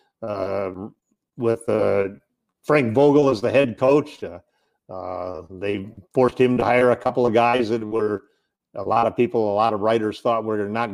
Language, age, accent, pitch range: English, 50-69, American, 110-140 Hz